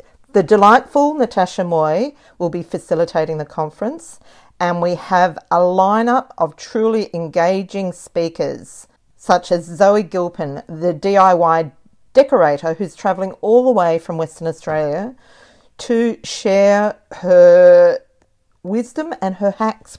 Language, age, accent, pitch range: English, 40-59, Australian, 175-225 Hz